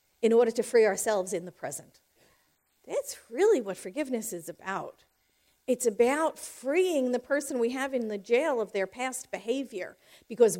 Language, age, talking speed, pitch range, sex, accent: English, 50-69, 165 wpm, 200-265 Hz, female, American